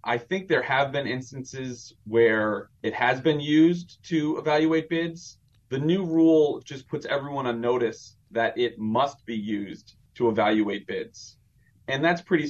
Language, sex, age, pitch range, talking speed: English, male, 30-49, 110-130 Hz, 160 wpm